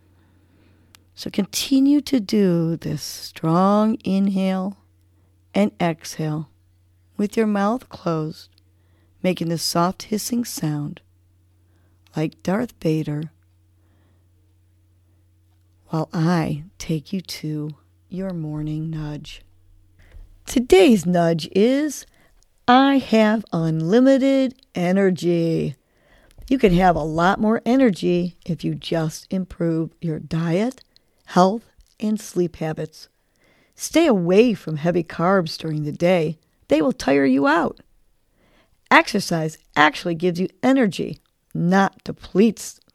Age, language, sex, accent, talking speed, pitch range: 40-59, English, female, American, 100 wpm, 150-205 Hz